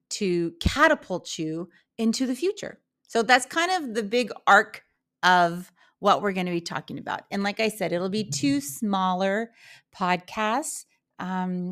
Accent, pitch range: American, 180-245 Hz